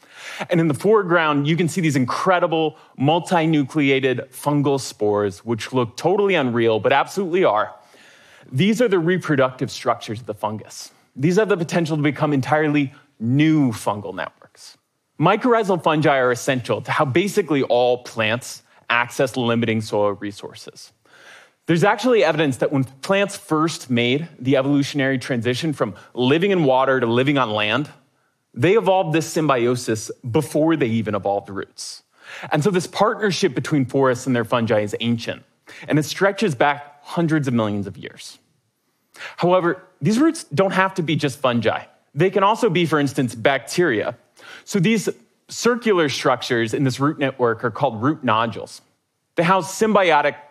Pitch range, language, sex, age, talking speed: 125-170 Hz, French, male, 30-49, 155 wpm